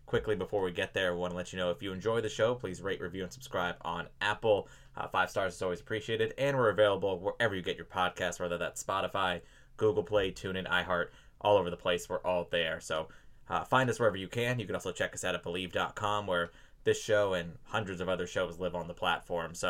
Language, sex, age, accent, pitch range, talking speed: English, male, 20-39, American, 95-120 Hz, 240 wpm